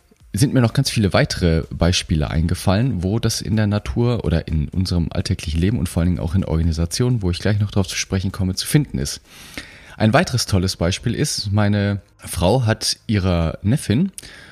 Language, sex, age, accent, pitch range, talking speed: German, male, 30-49, German, 85-115 Hz, 190 wpm